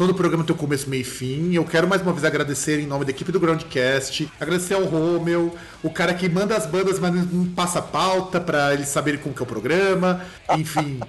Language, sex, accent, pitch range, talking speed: Portuguese, male, Brazilian, 155-195 Hz, 235 wpm